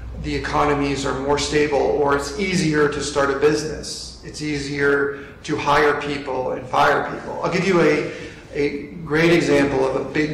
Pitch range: 135-150 Hz